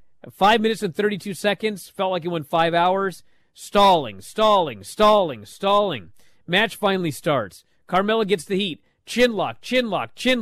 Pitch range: 135-205 Hz